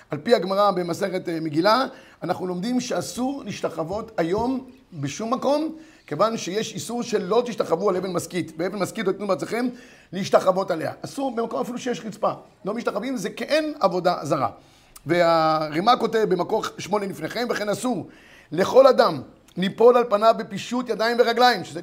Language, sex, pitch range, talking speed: Hebrew, male, 185-250 Hz, 150 wpm